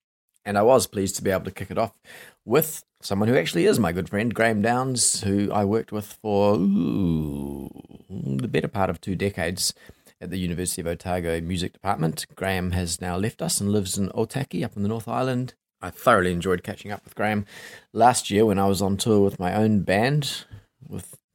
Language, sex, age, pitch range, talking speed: English, male, 30-49, 95-115 Hz, 200 wpm